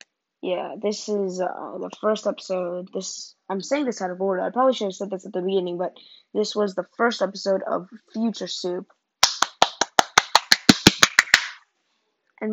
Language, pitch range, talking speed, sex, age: English, 185-220 Hz, 160 wpm, female, 20-39